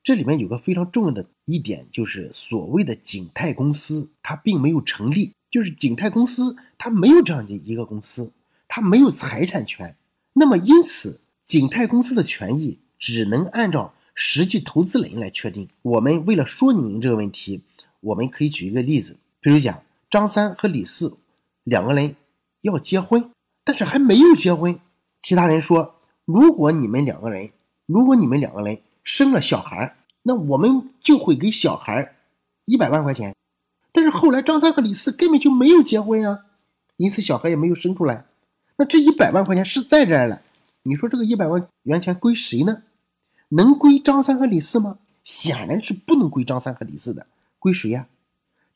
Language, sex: Chinese, male